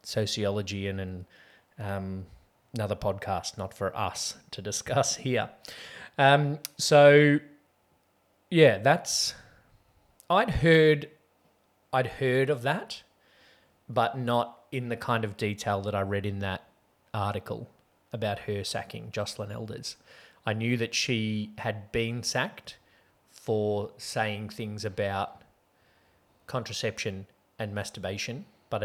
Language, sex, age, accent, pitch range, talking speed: English, male, 20-39, Australian, 100-125 Hz, 115 wpm